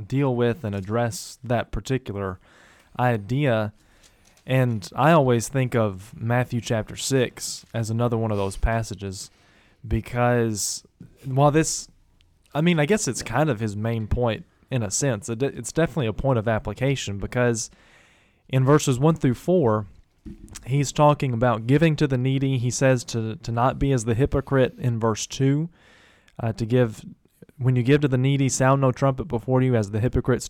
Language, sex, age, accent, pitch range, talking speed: English, male, 20-39, American, 110-130 Hz, 170 wpm